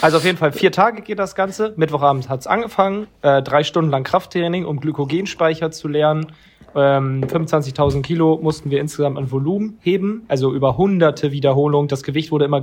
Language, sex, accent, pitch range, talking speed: German, male, German, 135-165 Hz, 190 wpm